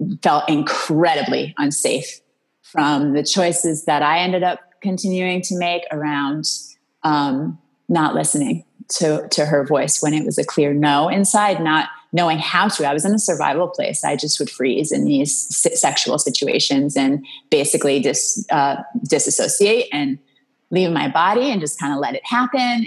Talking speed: 165 wpm